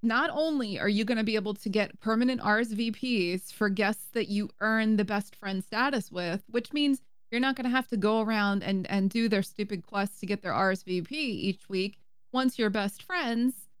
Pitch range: 190-230 Hz